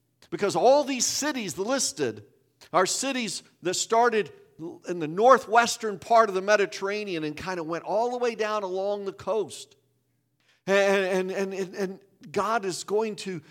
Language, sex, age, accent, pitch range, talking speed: English, male, 50-69, American, 165-225 Hz, 155 wpm